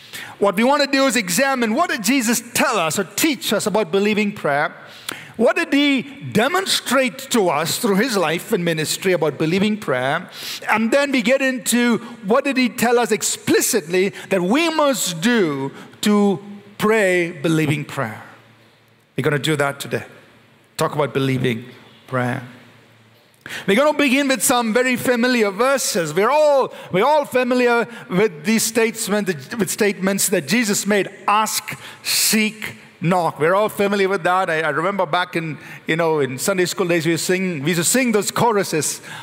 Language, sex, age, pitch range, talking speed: English, male, 50-69, 160-235 Hz, 165 wpm